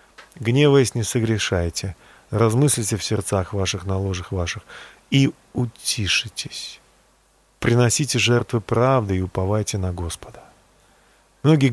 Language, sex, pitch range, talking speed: Russian, male, 95-120 Hz, 95 wpm